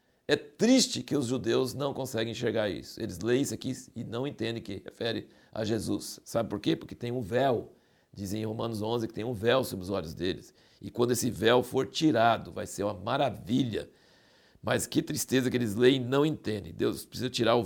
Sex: male